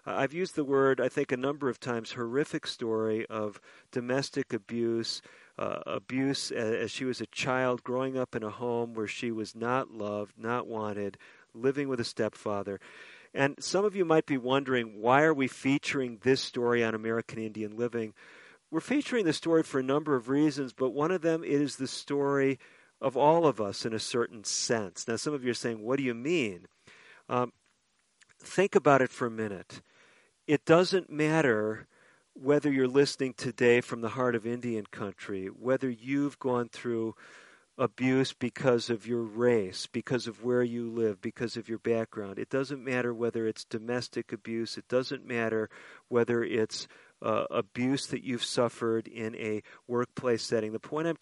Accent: American